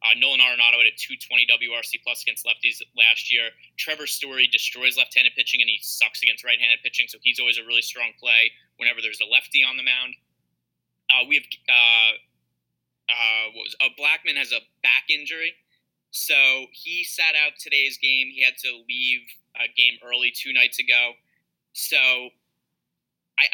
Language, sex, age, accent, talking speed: English, male, 20-39, American, 175 wpm